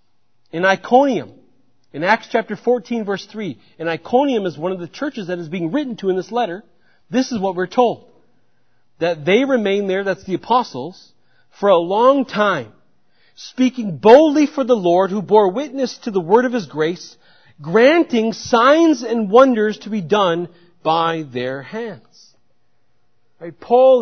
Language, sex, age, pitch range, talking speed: English, male, 40-59, 180-255 Hz, 160 wpm